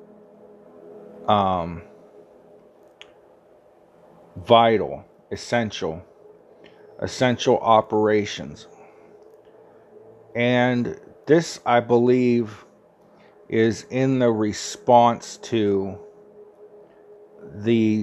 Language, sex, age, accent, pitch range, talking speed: English, male, 40-59, American, 100-120 Hz, 50 wpm